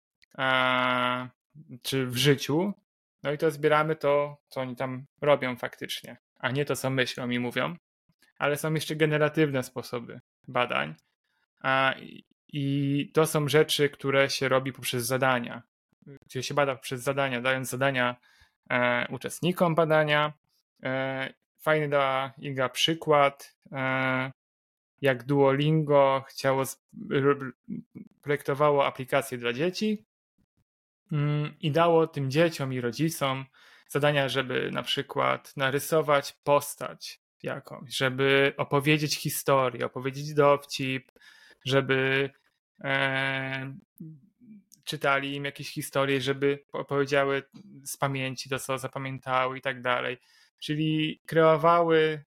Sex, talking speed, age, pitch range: male, 110 wpm, 20-39, 130-150 Hz